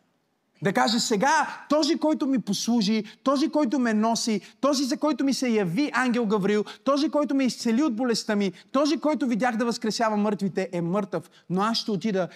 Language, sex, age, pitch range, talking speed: Bulgarian, male, 30-49, 190-275 Hz, 185 wpm